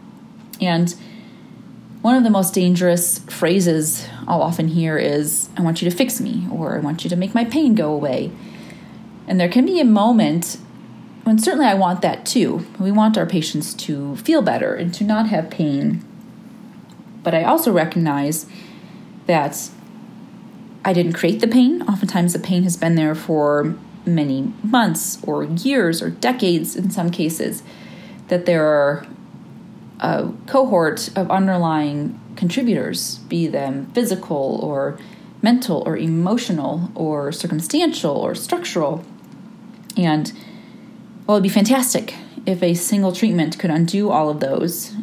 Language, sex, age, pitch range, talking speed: English, female, 30-49, 170-225 Hz, 145 wpm